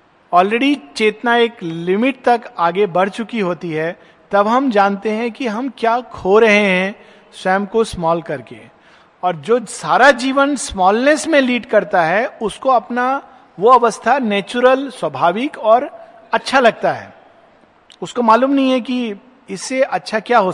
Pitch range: 185-245 Hz